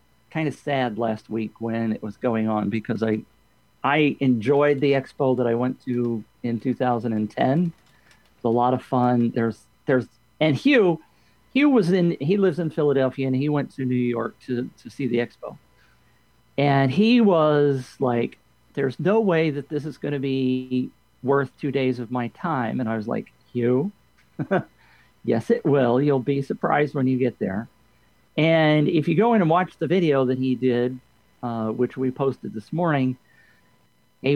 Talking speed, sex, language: 180 wpm, male, English